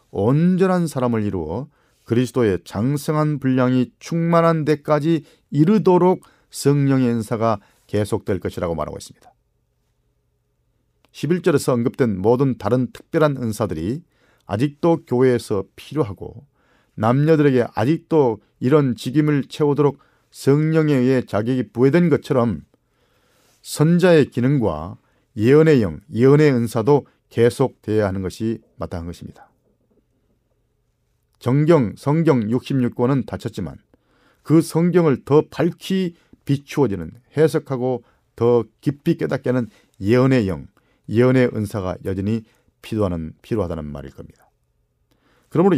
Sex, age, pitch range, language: male, 40-59, 110-145 Hz, Korean